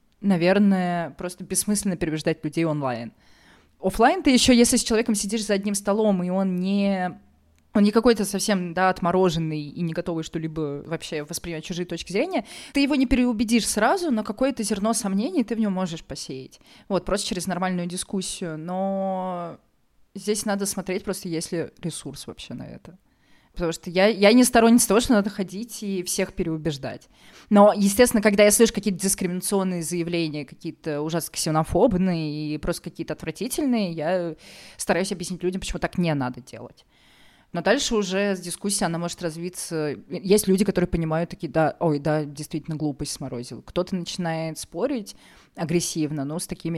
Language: Russian